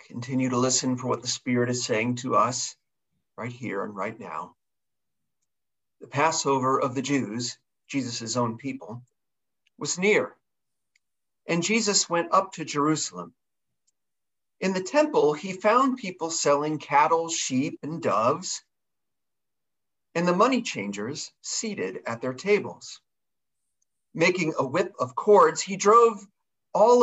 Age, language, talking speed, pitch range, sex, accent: 40-59, English, 130 wpm, 130-185 Hz, male, American